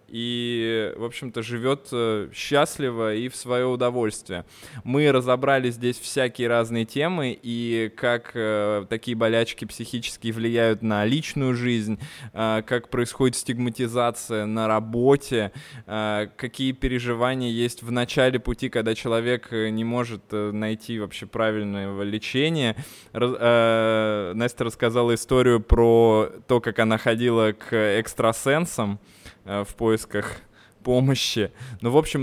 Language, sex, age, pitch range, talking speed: Russian, male, 20-39, 110-125 Hz, 120 wpm